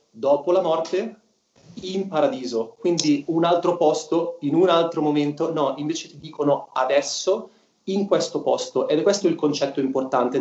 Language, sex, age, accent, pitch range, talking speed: Italian, male, 30-49, native, 140-190 Hz, 155 wpm